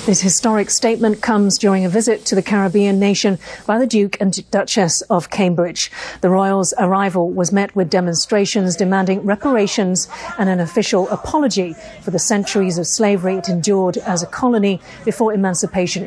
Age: 40-59